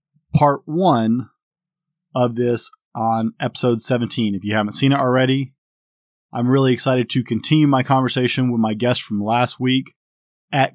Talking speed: 150 wpm